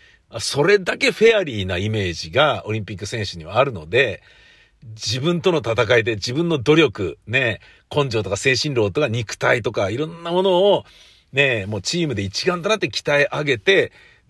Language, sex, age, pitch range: Japanese, male, 50-69, 100-155 Hz